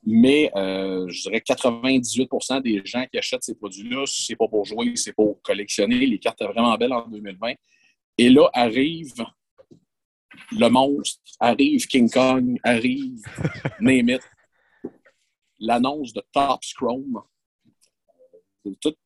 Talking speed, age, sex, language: 130 wpm, 50-69, male, French